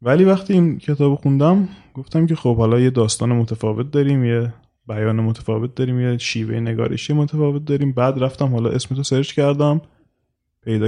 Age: 20-39